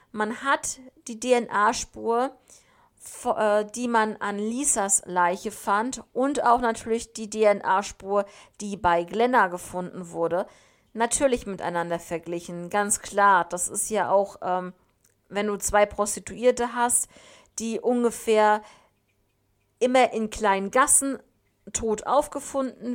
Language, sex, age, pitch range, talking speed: German, female, 50-69, 195-245 Hz, 110 wpm